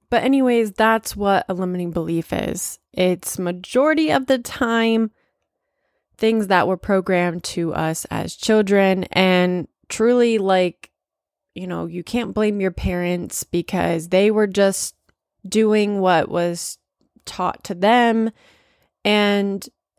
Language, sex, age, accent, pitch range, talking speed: English, female, 20-39, American, 175-225 Hz, 125 wpm